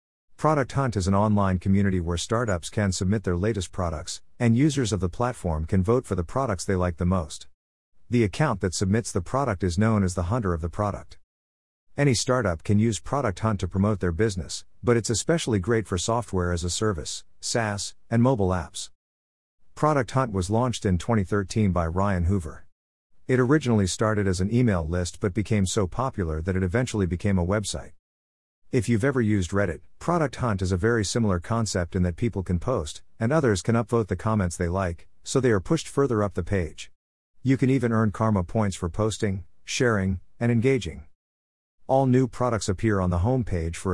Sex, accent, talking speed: male, American, 190 wpm